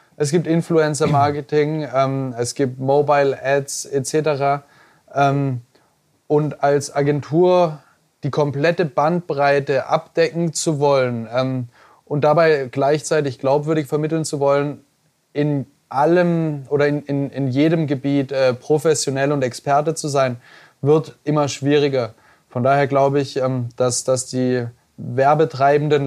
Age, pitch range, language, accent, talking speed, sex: 20-39, 125-145 Hz, German, German, 120 wpm, male